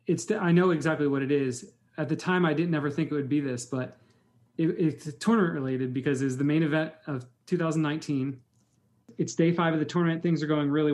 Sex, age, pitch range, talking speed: male, 30-49, 145-165 Hz, 220 wpm